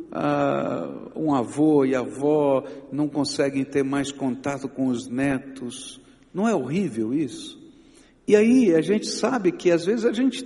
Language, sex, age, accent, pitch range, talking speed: Portuguese, male, 60-79, Brazilian, 140-220 Hz, 150 wpm